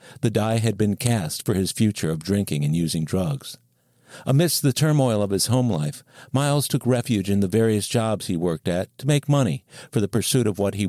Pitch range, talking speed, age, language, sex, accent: 95-135 Hz, 215 wpm, 60-79, English, male, American